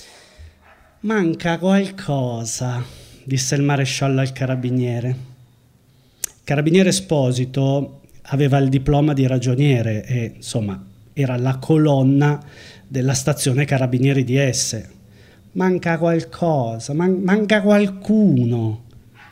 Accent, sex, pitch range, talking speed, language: native, male, 125-170 Hz, 95 wpm, Italian